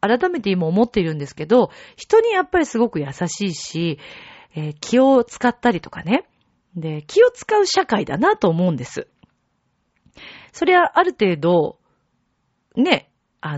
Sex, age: female, 40-59